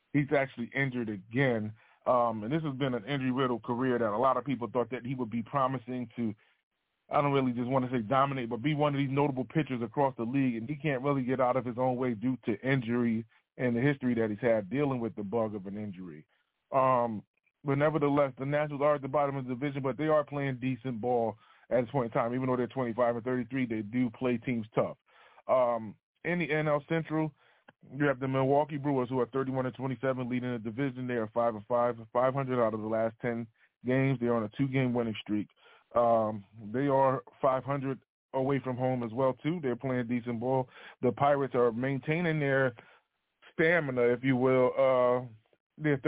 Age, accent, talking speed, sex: 30-49, American, 210 wpm, male